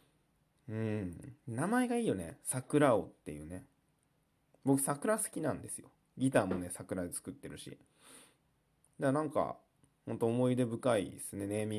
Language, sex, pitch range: Japanese, male, 110-150 Hz